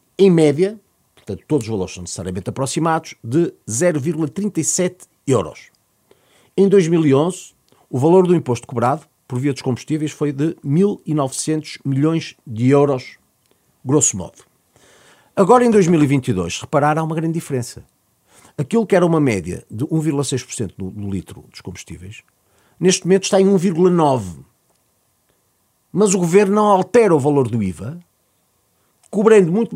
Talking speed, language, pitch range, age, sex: 135 wpm, Portuguese, 130-195 Hz, 50-69, male